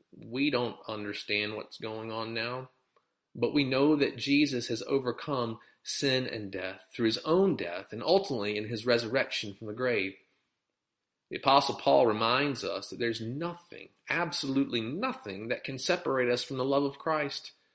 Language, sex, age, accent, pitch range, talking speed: English, male, 40-59, American, 110-150 Hz, 160 wpm